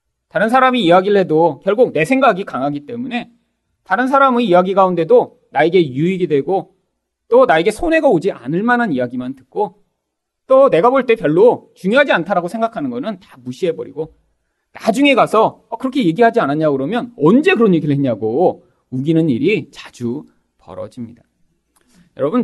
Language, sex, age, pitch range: Korean, male, 40-59, 160-255 Hz